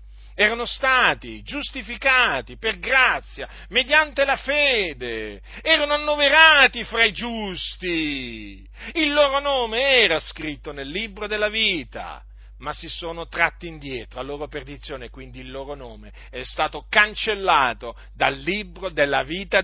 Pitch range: 130-210 Hz